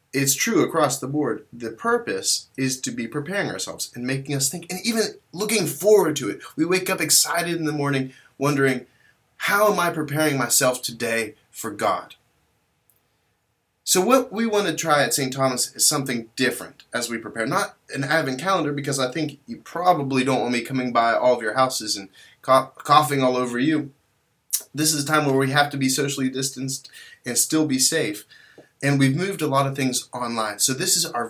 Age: 20-39